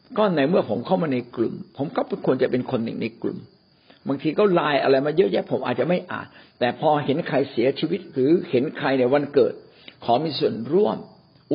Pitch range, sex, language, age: 135-200 Hz, male, Thai, 60-79